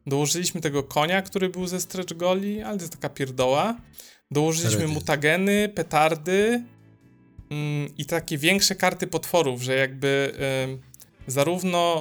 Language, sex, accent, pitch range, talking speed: Polish, male, native, 135-165 Hz, 120 wpm